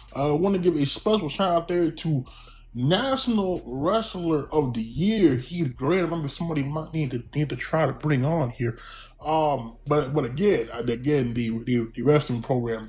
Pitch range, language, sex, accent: 130-195 Hz, English, male, American